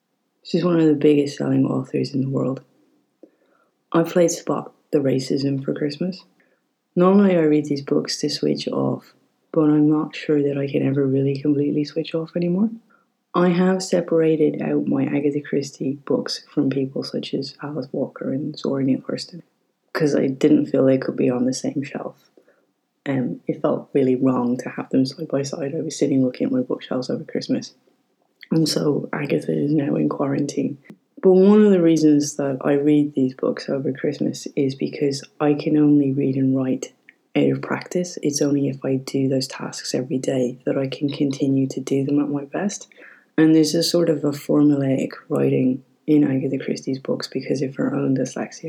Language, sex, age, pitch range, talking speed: English, female, 30-49, 135-160 Hz, 190 wpm